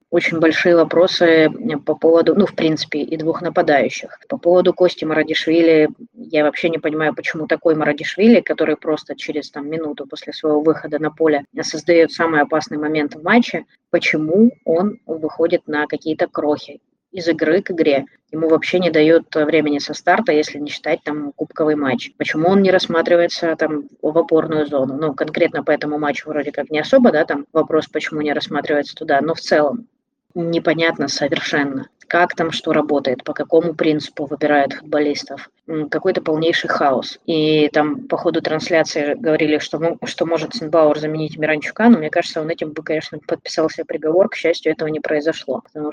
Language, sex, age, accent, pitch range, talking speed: Russian, female, 20-39, native, 150-170 Hz, 170 wpm